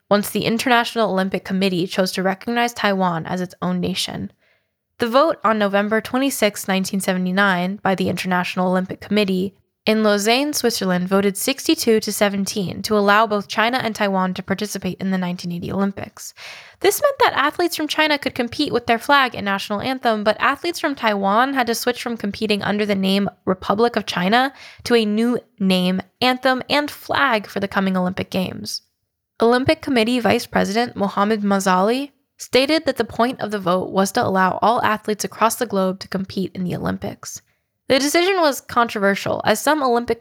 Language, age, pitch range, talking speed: English, 10-29, 190-240 Hz, 175 wpm